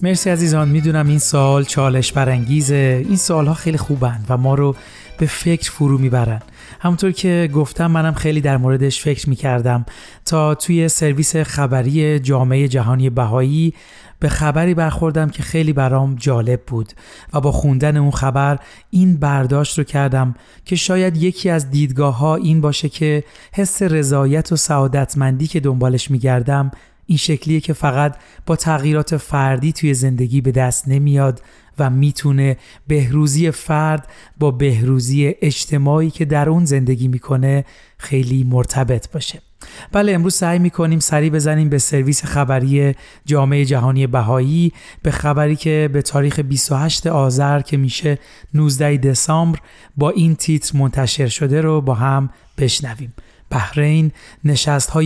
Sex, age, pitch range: male, 30-49, 135-155 Hz